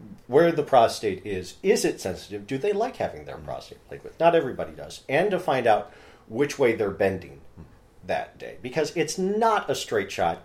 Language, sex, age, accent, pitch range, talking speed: English, male, 40-59, American, 95-155 Hz, 195 wpm